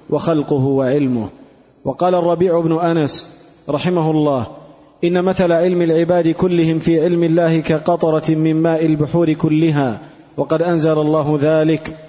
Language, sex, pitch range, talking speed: Arabic, male, 155-170 Hz, 125 wpm